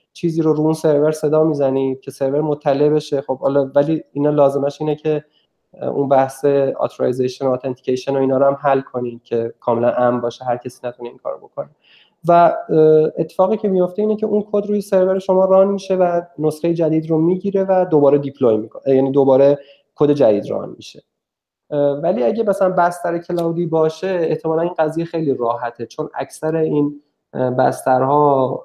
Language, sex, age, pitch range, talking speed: Persian, male, 20-39, 135-165 Hz, 170 wpm